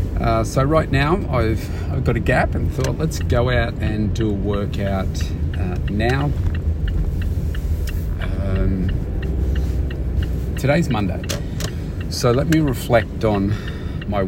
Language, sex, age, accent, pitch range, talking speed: English, male, 30-49, Australian, 80-105 Hz, 120 wpm